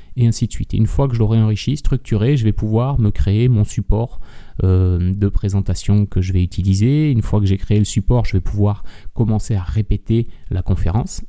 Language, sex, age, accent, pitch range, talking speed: French, male, 30-49, French, 100-140 Hz, 220 wpm